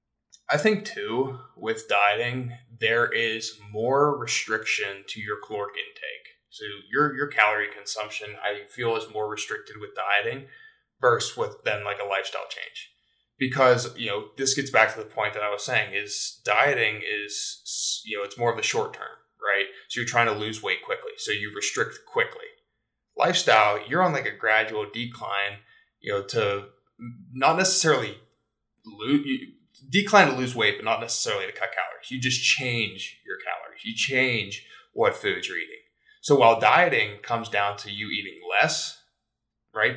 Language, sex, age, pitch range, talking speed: English, male, 20-39, 105-155 Hz, 170 wpm